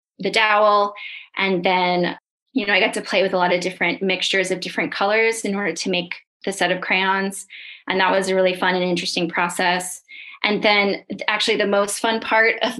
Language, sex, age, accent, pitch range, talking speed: English, female, 20-39, American, 185-225 Hz, 205 wpm